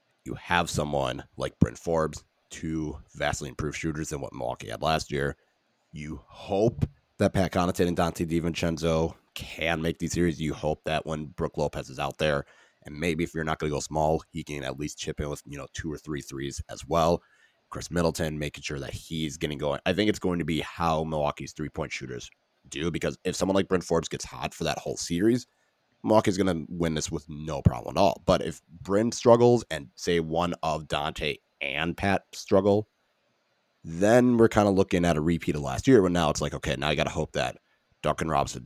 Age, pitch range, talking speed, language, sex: 30-49, 75-90 Hz, 215 wpm, English, male